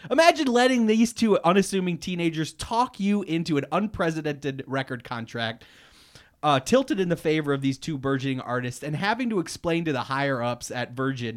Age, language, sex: 30-49, English, male